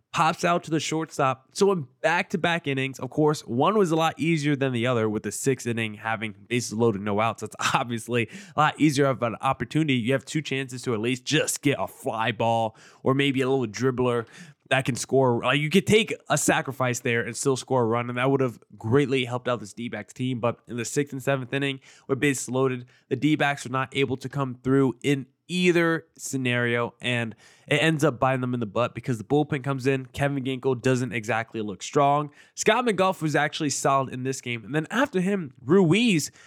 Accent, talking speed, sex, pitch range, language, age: American, 215 wpm, male, 120-150 Hz, English, 20-39